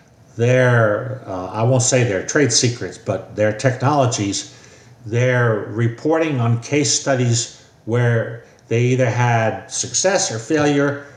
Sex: male